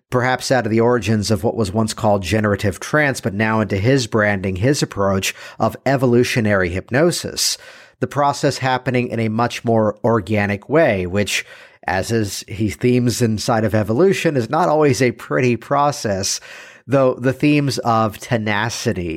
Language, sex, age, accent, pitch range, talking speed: English, male, 50-69, American, 105-130 Hz, 155 wpm